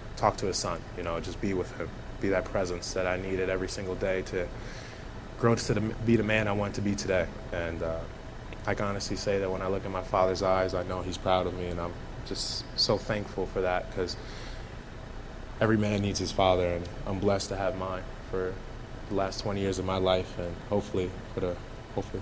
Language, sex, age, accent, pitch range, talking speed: English, male, 20-39, American, 95-110 Hz, 220 wpm